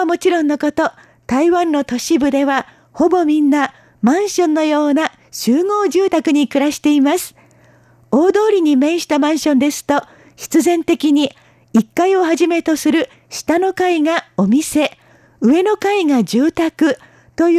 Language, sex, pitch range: Japanese, female, 280-345 Hz